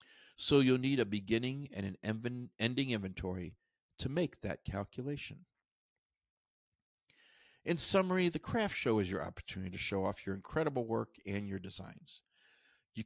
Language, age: English, 50-69